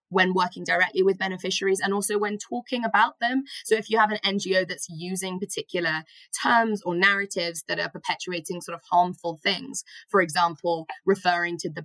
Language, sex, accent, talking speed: English, female, British, 175 wpm